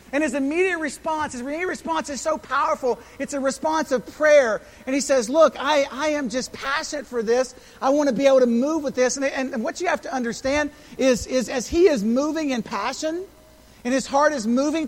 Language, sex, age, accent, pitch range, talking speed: English, male, 50-69, American, 250-295 Hz, 220 wpm